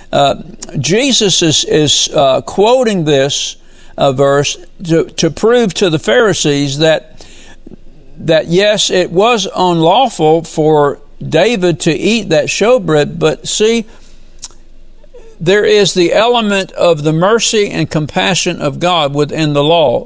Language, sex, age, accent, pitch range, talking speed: English, male, 60-79, American, 145-185 Hz, 130 wpm